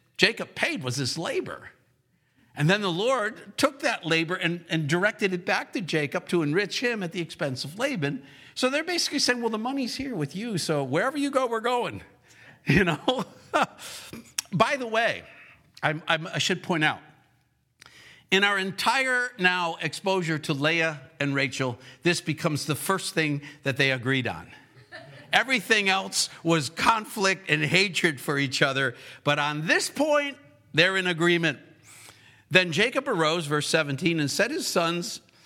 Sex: male